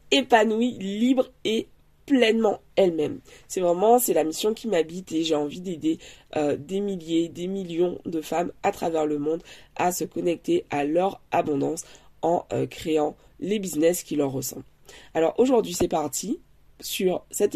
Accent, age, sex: French, 20-39, female